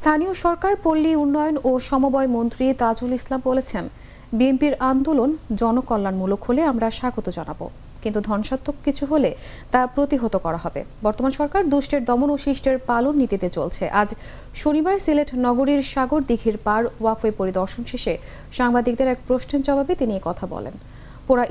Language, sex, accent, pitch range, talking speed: English, female, Indian, 215-275 Hz, 130 wpm